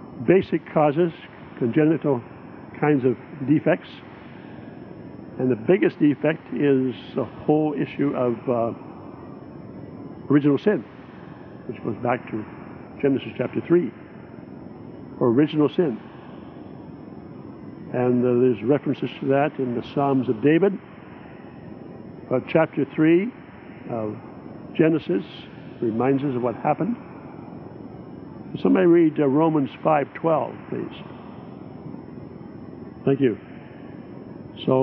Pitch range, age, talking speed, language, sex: 125-150 Hz, 60-79, 100 wpm, English, male